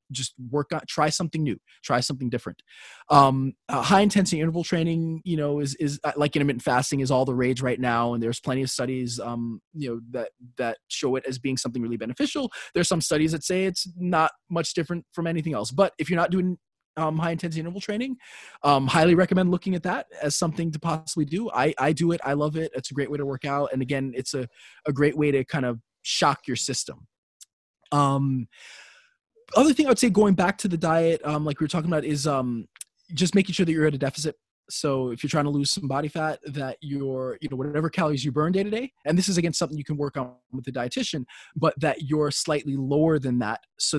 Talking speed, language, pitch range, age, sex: 235 wpm, English, 130-170 Hz, 20-39, male